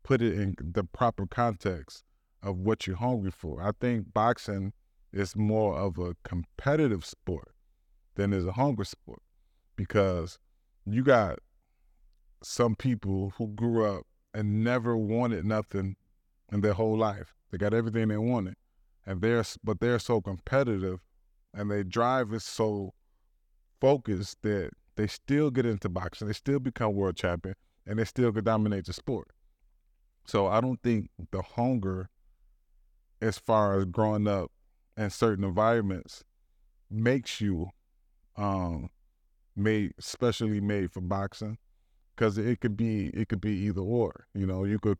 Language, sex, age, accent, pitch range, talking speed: English, male, 20-39, American, 90-110 Hz, 150 wpm